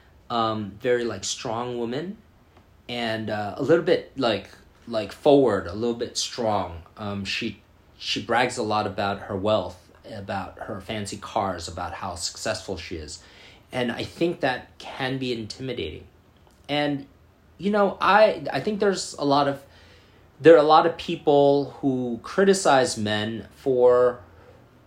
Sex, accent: male, American